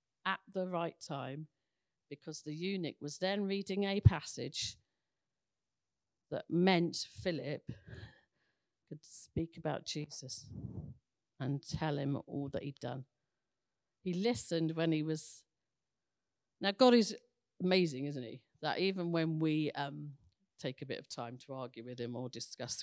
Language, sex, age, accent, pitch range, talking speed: English, female, 50-69, British, 135-160 Hz, 140 wpm